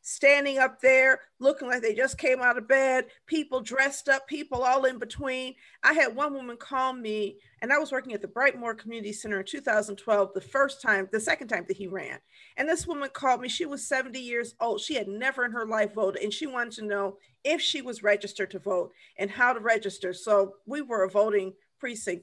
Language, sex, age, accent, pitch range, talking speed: English, female, 50-69, American, 200-275 Hz, 220 wpm